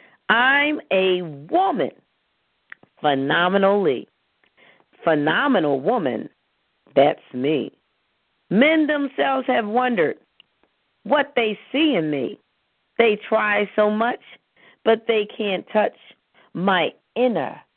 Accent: American